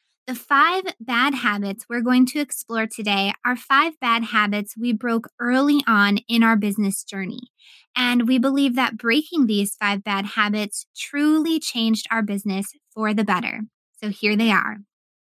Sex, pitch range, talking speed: female, 215-270 Hz, 160 wpm